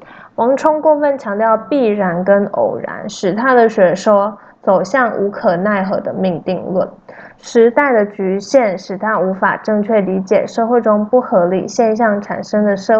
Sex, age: female, 20-39